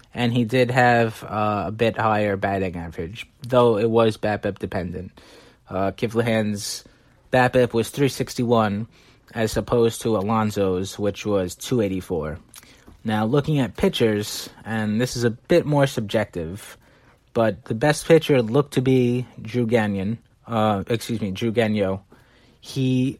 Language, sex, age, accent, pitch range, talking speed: English, male, 30-49, American, 105-125 Hz, 135 wpm